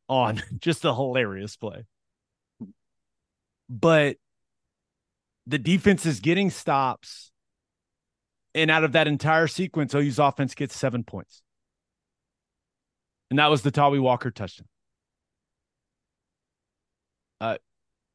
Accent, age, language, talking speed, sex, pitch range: American, 30-49, English, 100 wpm, male, 130-170 Hz